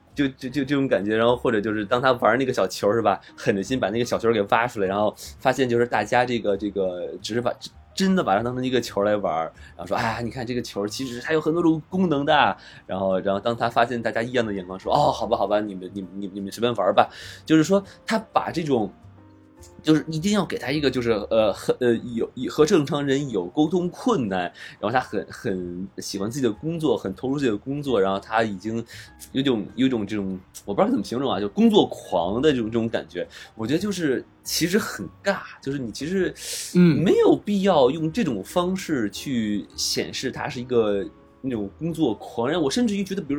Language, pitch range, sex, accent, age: Chinese, 105-165 Hz, male, native, 20-39